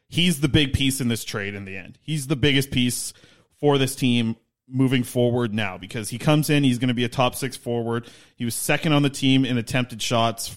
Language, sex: English, male